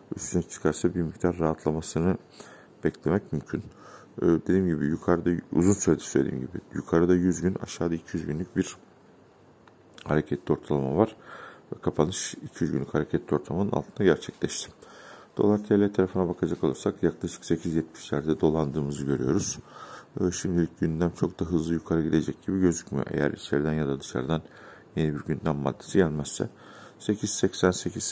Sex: male